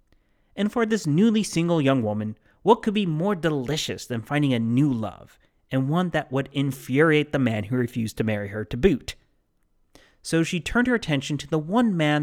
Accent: American